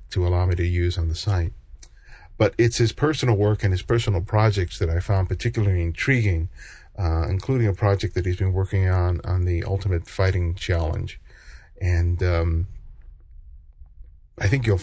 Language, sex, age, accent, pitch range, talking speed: English, male, 50-69, American, 85-105 Hz, 165 wpm